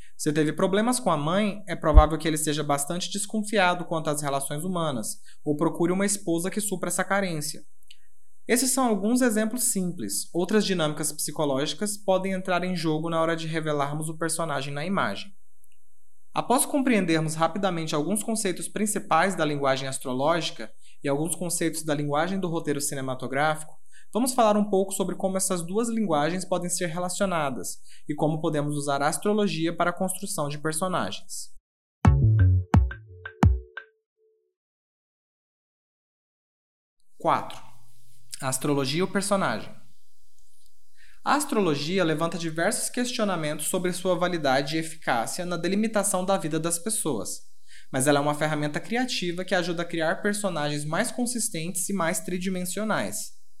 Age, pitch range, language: 20-39, 150-195 Hz, Portuguese